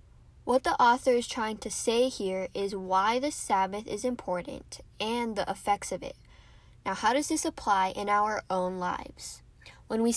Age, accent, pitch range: 10-29, American, 190-250 Hz